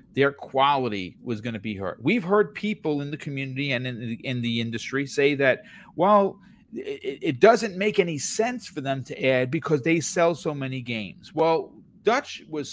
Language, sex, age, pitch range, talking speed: English, male, 40-59, 130-205 Hz, 190 wpm